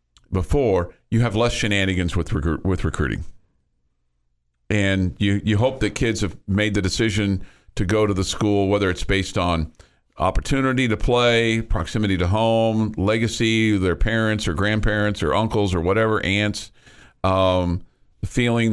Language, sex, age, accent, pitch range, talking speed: English, male, 50-69, American, 95-110 Hz, 145 wpm